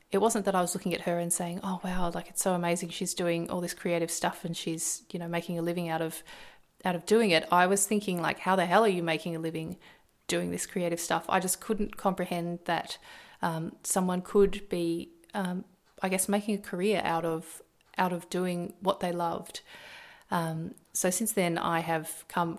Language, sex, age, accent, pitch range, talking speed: English, female, 30-49, Australian, 170-195 Hz, 215 wpm